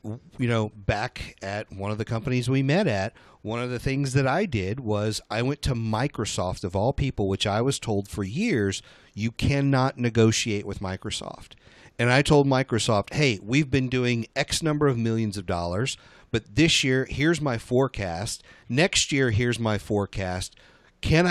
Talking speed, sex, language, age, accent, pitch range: 175 wpm, male, English, 50-69, American, 105-135 Hz